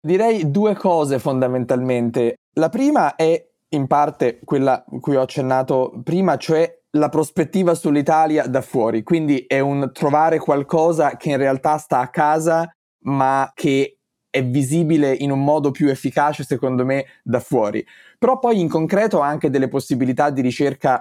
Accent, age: native, 20-39